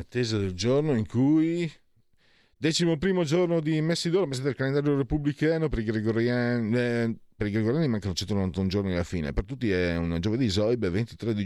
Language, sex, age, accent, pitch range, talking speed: Italian, male, 40-59, native, 100-130 Hz, 175 wpm